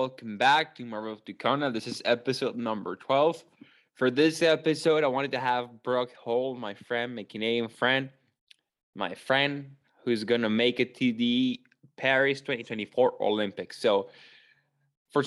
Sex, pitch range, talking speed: male, 115-150 Hz, 155 wpm